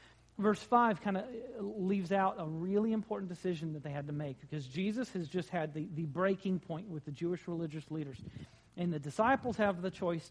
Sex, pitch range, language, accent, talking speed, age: male, 155-215 Hz, English, American, 205 wpm, 40-59